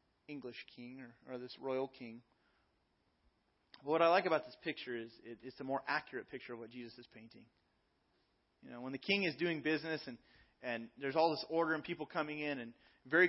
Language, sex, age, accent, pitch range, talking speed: English, male, 30-49, American, 120-145 Hz, 200 wpm